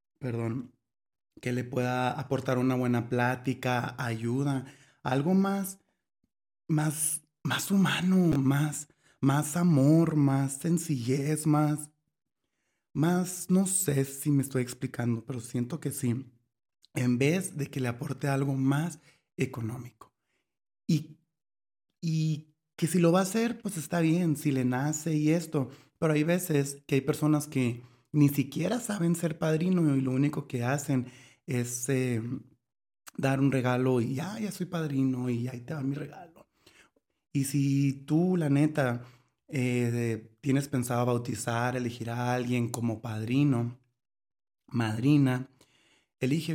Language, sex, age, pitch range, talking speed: Spanish, male, 30-49, 125-155 Hz, 135 wpm